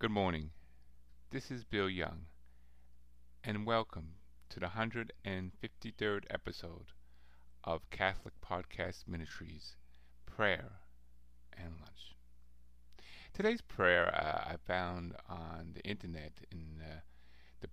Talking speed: 100 wpm